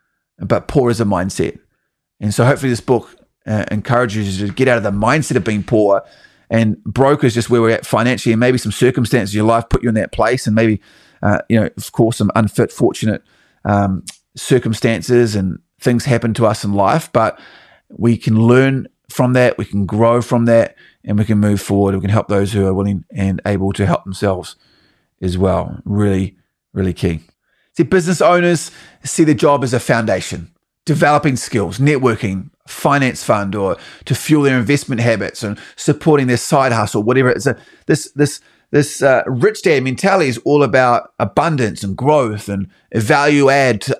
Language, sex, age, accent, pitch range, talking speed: English, male, 30-49, Australian, 105-130 Hz, 190 wpm